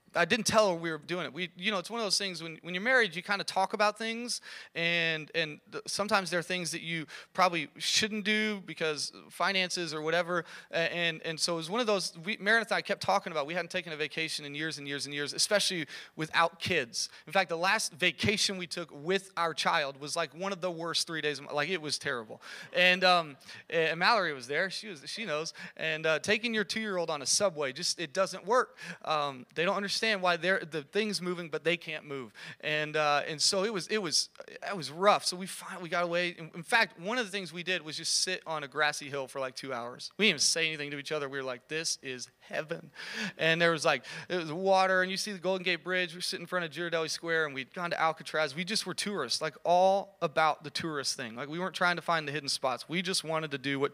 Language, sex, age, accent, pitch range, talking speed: English, male, 30-49, American, 155-190 Hz, 260 wpm